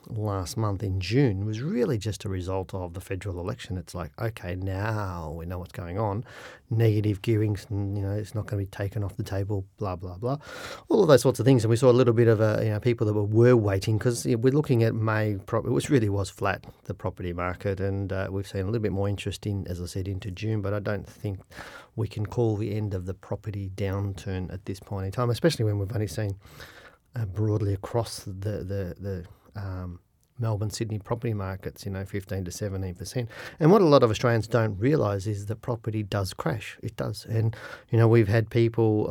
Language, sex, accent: English, male, Australian